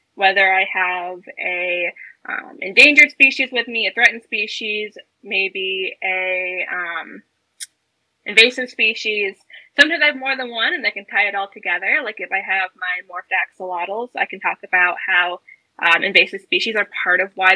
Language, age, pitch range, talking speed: English, 20-39, 195-255 Hz, 160 wpm